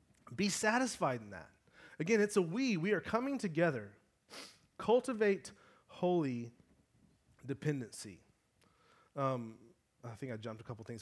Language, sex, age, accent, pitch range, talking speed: English, male, 30-49, American, 105-135 Hz, 125 wpm